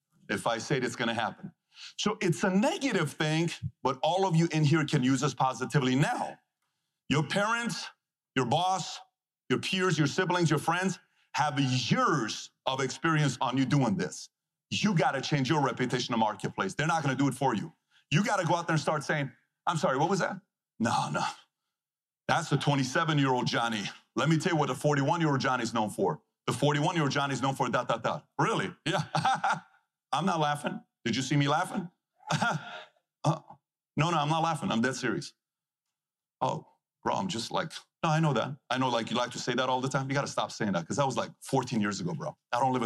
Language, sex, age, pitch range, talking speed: English, male, 40-59, 135-175 Hz, 210 wpm